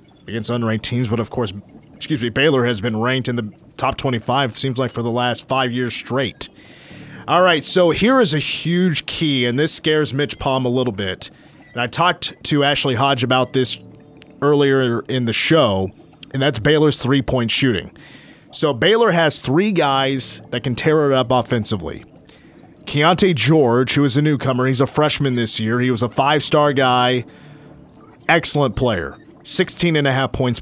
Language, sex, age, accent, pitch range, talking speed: English, male, 30-49, American, 125-150 Hz, 175 wpm